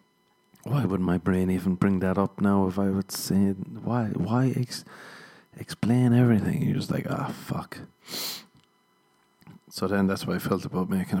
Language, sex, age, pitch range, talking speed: English, male, 40-59, 95-125 Hz, 170 wpm